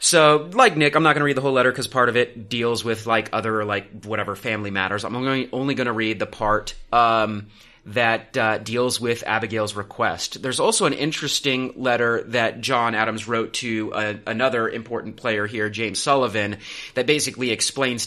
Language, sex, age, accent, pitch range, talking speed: English, male, 30-49, American, 105-130 Hz, 195 wpm